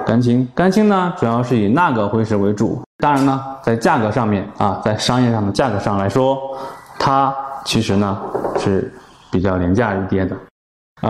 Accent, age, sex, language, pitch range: native, 20-39, male, Chinese, 105-130 Hz